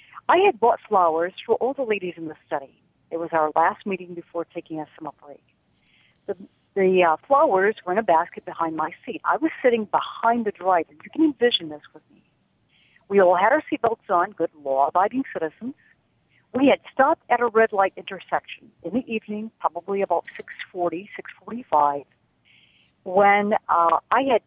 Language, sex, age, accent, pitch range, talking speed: English, female, 50-69, American, 165-225 Hz, 175 wpm